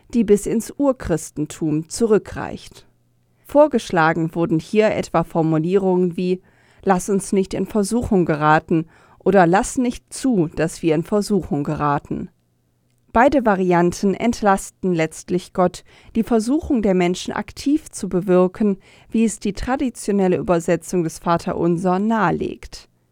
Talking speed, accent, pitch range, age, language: 120 wpm, German, 165-215 Hz, 40-59, German